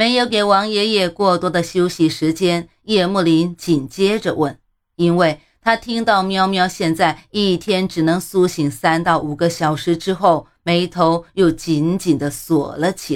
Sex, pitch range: female, 150-185 Hz